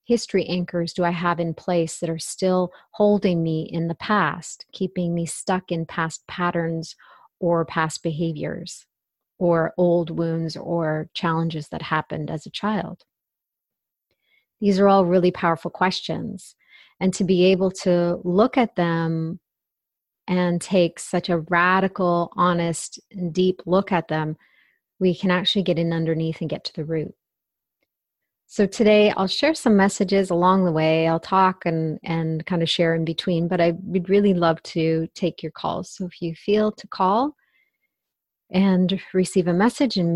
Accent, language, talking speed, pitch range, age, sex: American, English, 160 wpm, 165-190 Hz, 30-49, female